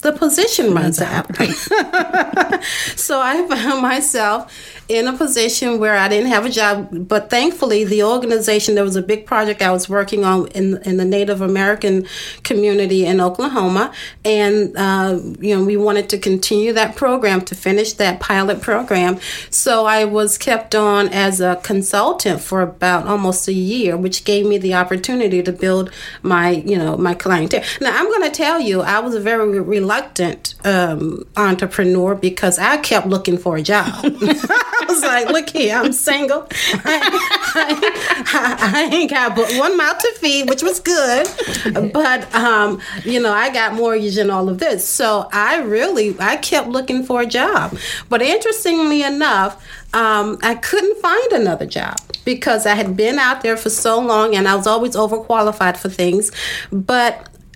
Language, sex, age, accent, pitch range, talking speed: English, female, 40-59, American, 195-255 Hz, 175 wpm